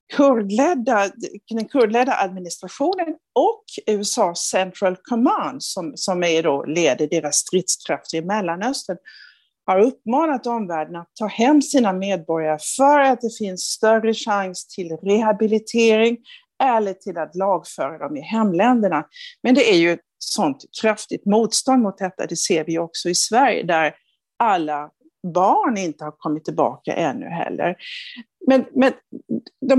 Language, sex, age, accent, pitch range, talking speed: Swedish, female, 50-69, native, 180-260 Hz, 135 wpm